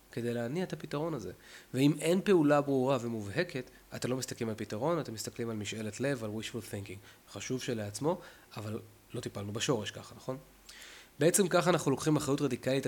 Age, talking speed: 20-39, 170 wpm